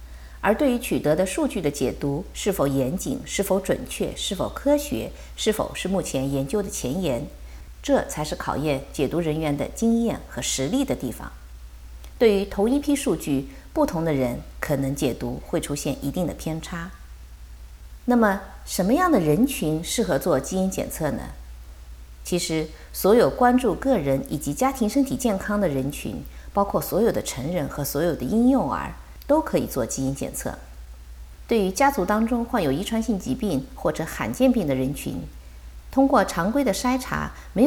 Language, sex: Chinese, female